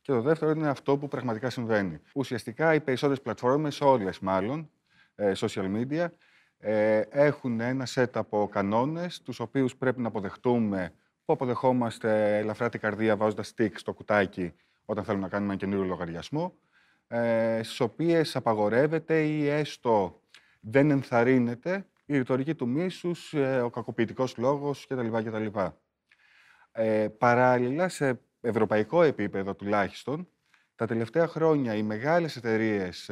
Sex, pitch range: male, 105-140 Hz